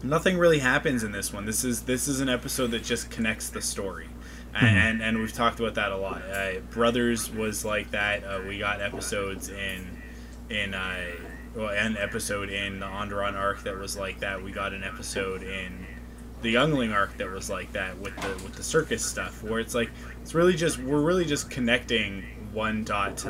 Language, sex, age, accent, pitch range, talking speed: English, male, 20-39, American, 95-120 Hz, 205 wpm